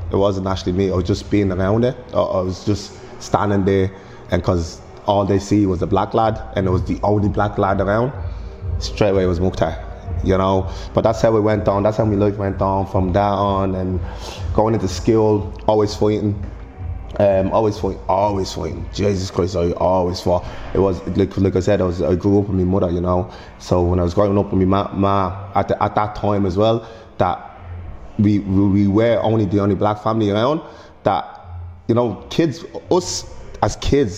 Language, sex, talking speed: English, male, 210 wpm